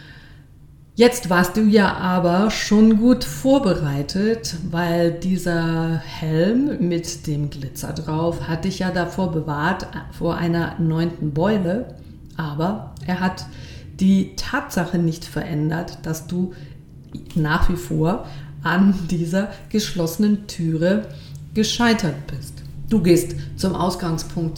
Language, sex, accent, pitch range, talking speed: German, female, German, 160-190 Hz, 110 wpm